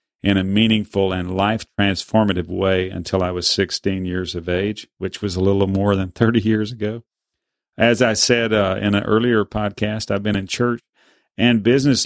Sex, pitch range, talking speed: male, 95-115 Hz, 180 wpm